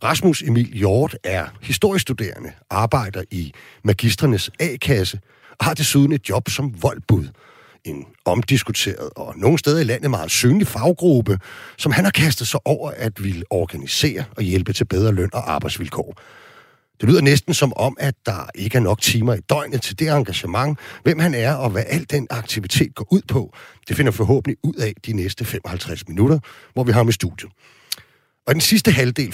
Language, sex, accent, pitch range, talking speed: Danish, male, native, 105-145 Hz, 180 wpm